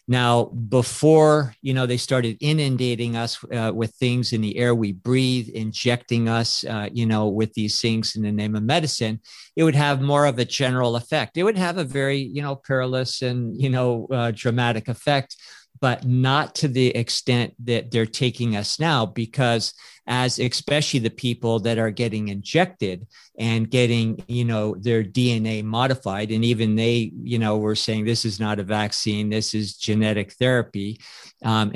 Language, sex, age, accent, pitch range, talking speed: English, male, 50-69, American, 110-130 Hz, 180 wpm